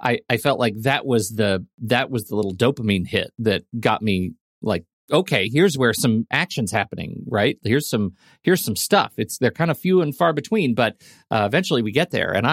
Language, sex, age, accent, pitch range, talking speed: English, male, 40-59, American, 100-135 Hz, 210 wpm